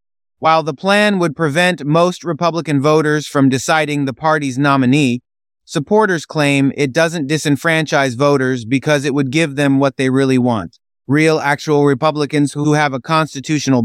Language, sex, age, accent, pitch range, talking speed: English, male, 30-49, American, 135-165 Hz, 145 wpm